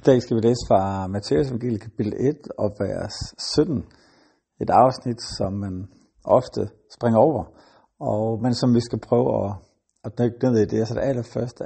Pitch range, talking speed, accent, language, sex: 110-125 Hz, 190 wpm, native, Danish, male